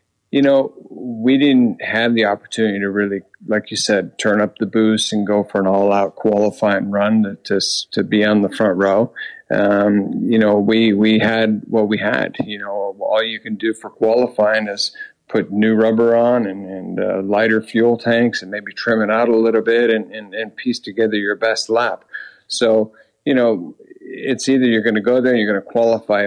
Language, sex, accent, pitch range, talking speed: English, male, American, 105-115 Hz, 205 wpm